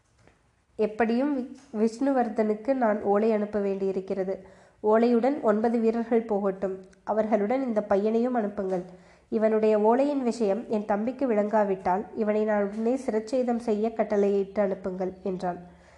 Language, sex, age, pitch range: Tamil, female, 20-39, 200-235 Hz